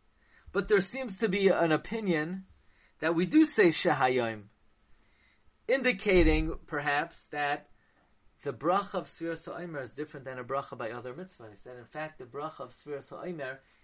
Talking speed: 155 wpm